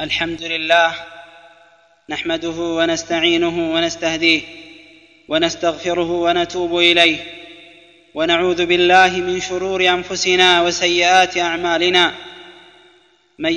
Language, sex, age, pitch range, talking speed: Amharic, male, 20-39, 180-190 Hz, 70 wpm